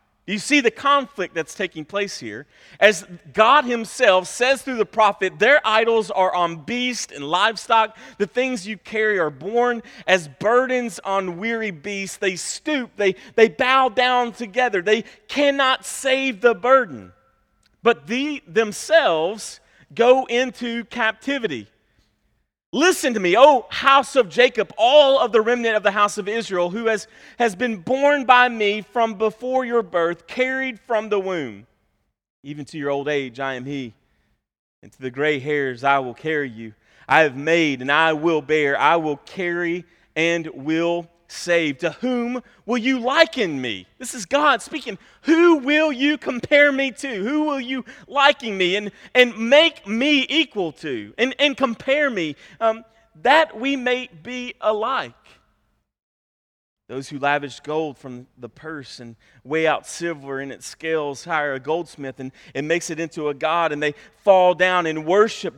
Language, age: English, 40-59